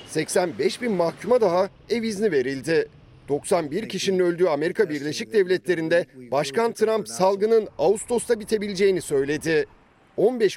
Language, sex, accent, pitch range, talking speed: Turkish, male, native, 155-215 Hz, 115 wpm